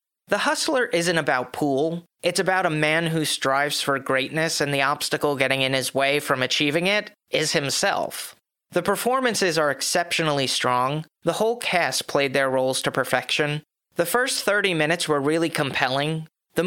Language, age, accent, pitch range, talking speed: English, 30-49, American, 140-175 Hz, 165 wpm